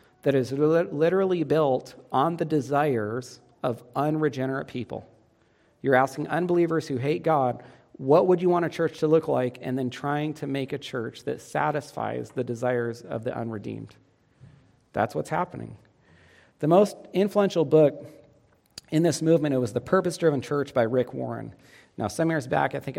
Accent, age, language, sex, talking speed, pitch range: American, 40-59, English, male, 165 wpm, 125-160 Hz